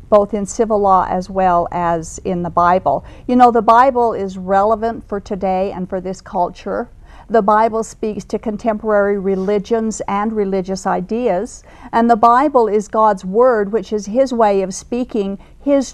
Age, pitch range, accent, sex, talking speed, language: 50-69, 200-250 Hz, American, female, 165 wpm, English